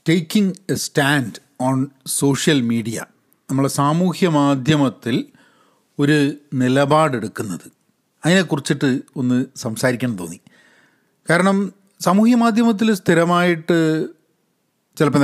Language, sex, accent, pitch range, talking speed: Malayalam, male, native, 135-195 Hz, 70 wpm